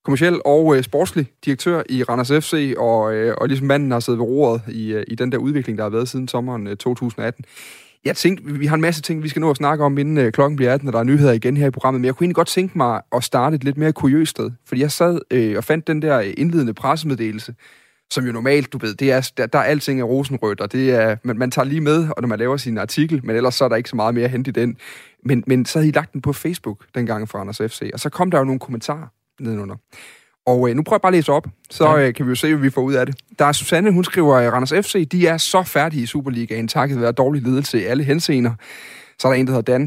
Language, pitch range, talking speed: Danish, 120-150 Hz, 285 wpm